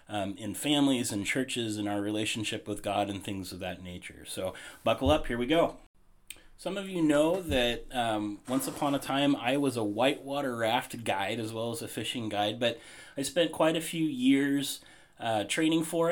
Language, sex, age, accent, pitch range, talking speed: English, male, 30-49, American, 110-145 Hz, 195 wpm